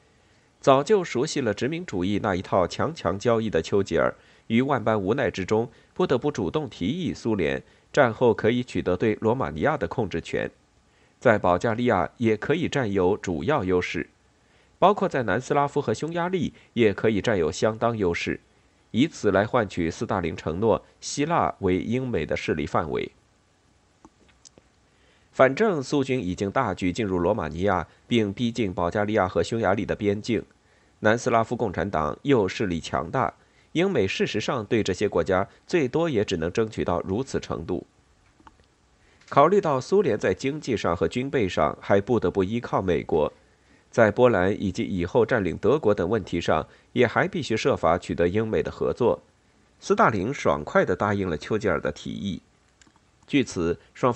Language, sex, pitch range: Chinese, male, 95-125 Hz